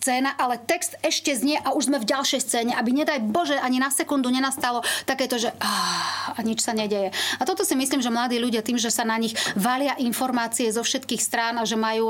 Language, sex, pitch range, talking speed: Slovak, female, 220-250 Hz, 220 wpm